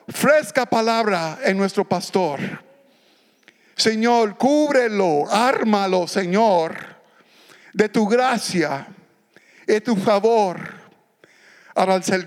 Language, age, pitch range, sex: English, 60-79, 185-245 Hz, male